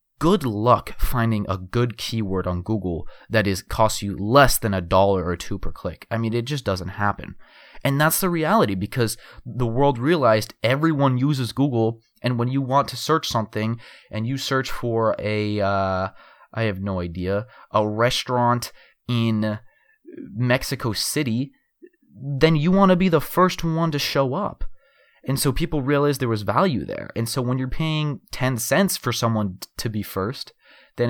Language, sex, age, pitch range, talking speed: English, male, 20-39, 100-135 Hz, 180 wpm